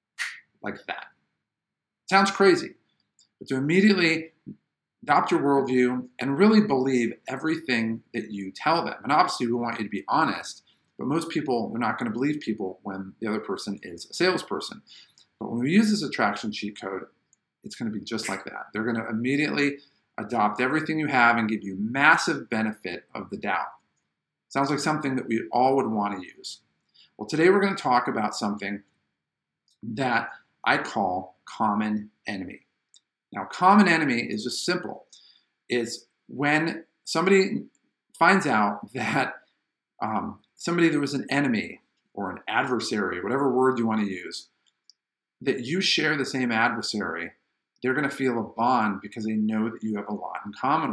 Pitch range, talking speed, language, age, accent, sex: 110-150 Hz, 170 wpm, English, 50-69, American, male